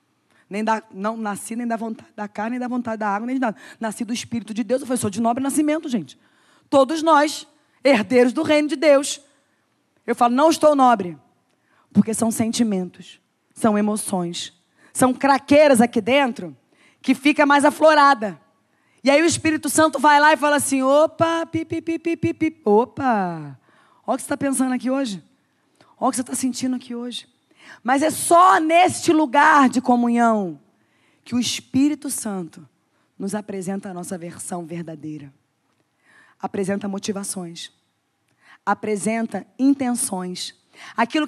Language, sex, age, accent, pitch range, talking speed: Portuguese, female, 20-39, Brazilian, 210-285 Hz, 155 wpm